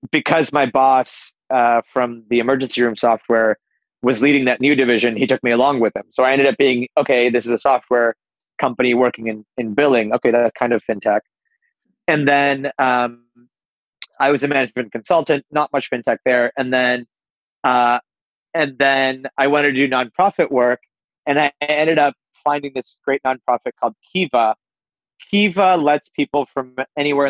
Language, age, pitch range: English, 30-49, 120-140 Hz